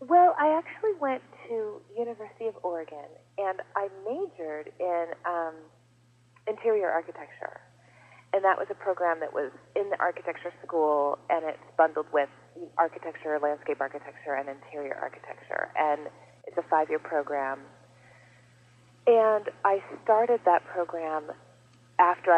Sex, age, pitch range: female, 30-49, 140-205 Hz